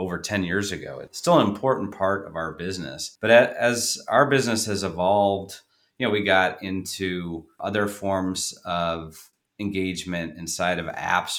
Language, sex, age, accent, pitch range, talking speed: English, male, 30-49, American, 85-100 Hz, 160 wpm